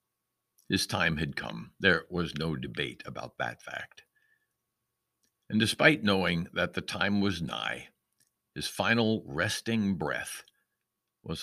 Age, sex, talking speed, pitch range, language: 60-79, male, 125 wpm, 75-100 Hz, English